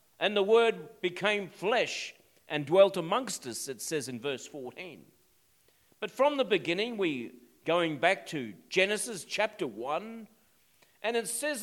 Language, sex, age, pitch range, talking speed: English, male, 50-69, 175-230 Hz, 145 wpm